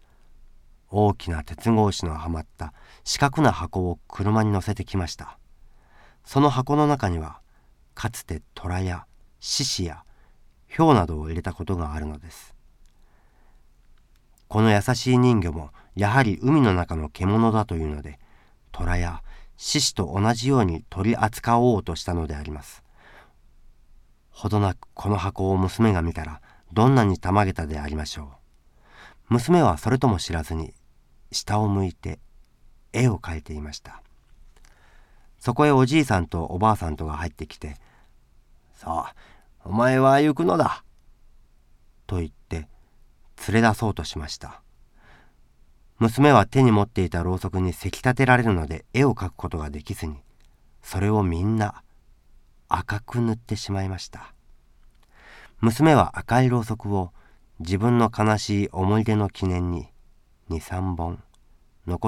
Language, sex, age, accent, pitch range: Japanese, male, 40-59, native, 80-110 Hz